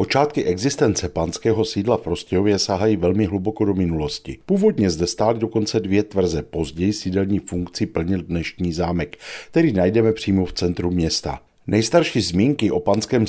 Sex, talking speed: male, 150 wpm